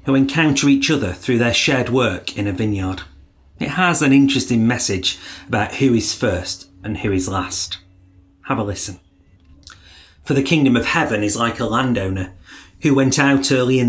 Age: 40-59